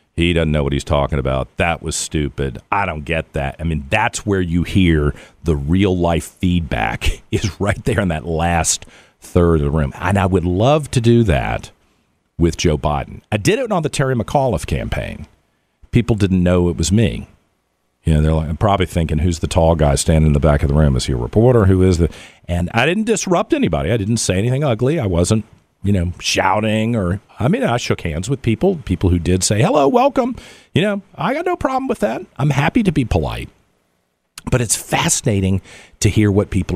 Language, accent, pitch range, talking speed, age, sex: English, American, 85-140 Hz, 215 wpm, 50-69, male